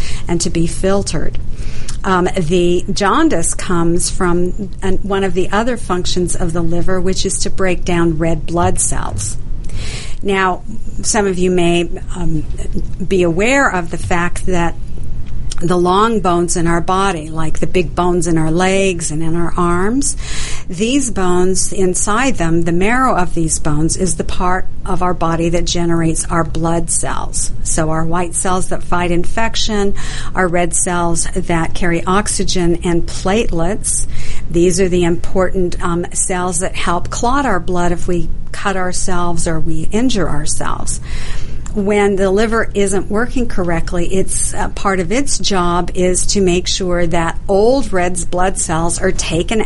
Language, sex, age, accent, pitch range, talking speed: English, female, 50-69, American, 170-195 Hz, 160 wpm